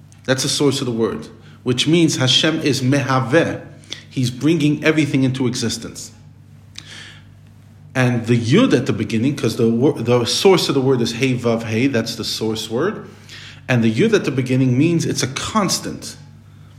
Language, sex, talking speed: English, male, 170 wpm